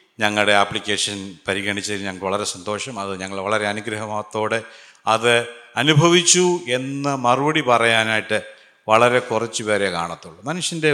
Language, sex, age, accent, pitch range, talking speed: Malayalam, male, 50-69, native, 110-145 Hz, 105 wpm